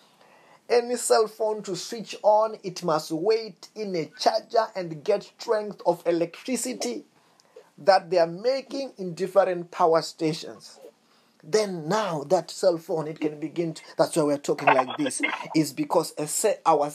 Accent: South African